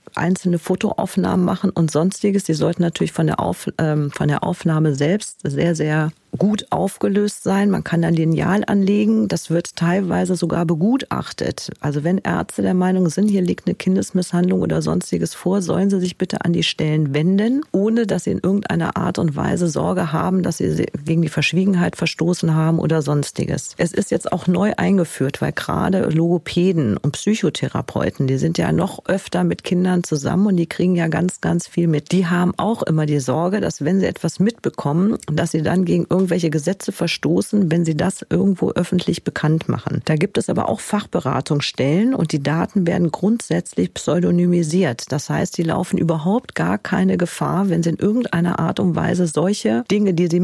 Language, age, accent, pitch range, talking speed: German, 40-59, German, 160-190 Hz, 185 wpm